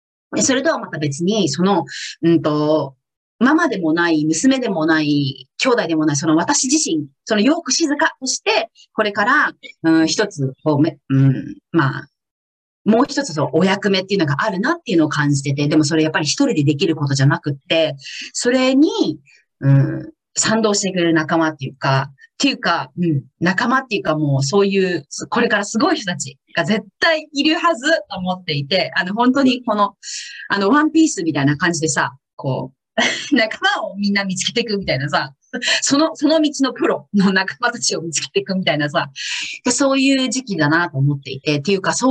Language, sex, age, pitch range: Japanese, female, 30-49, 155-250 Hz